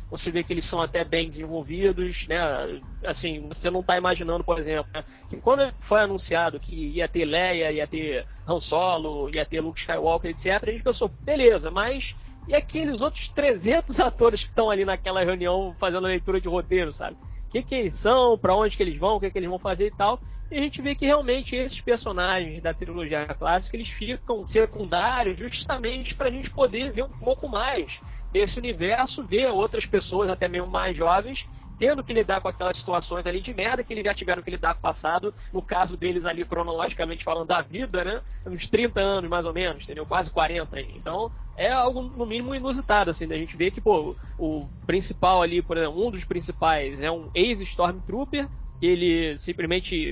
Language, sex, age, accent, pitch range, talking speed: Portuguese, male, 20-39, Brazilian, 170-235 Hz, 200 wpm